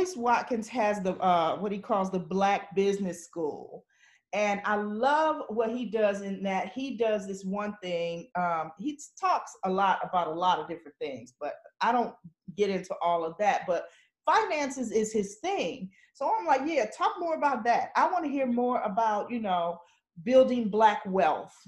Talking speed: 185 wpm